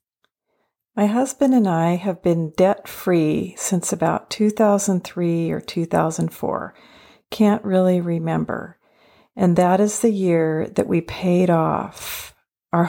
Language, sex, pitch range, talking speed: English, female, 170-210 Hz, 115 wpm